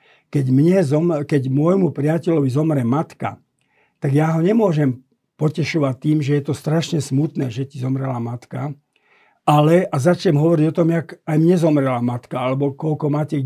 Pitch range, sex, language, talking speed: 135-170 Hz, male, Slovak, 160 wpm